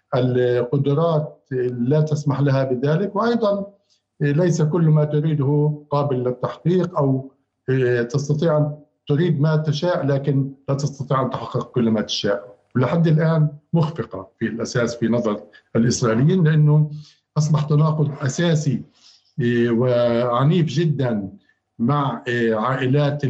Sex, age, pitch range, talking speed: male, 50-69, 125-150 Hz, 105 wpm